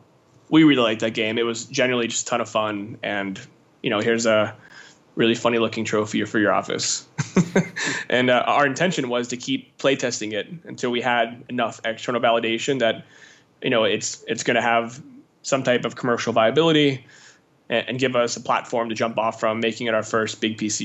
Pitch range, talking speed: 115-135 Hz, 195 wpm